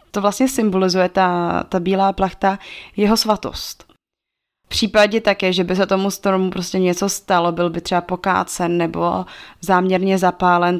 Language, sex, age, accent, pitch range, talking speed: Czech, female, 20-39, native, 175-195 Hz, 150 wpm